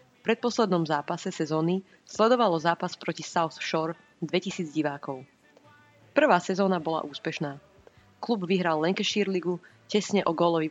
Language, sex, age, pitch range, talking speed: Slovak, female, 20-39, 160-190 Hz, 125 wpm